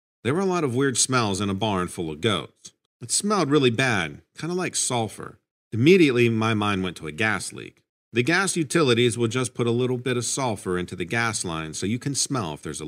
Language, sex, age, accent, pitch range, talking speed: English, male, 50-69, American, 100-150 Hz, 240 wpm